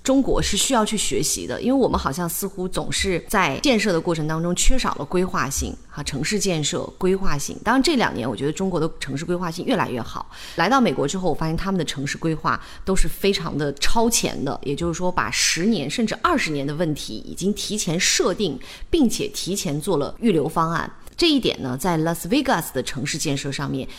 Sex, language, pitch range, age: female, Chinese, 150-210 Hz, 20-39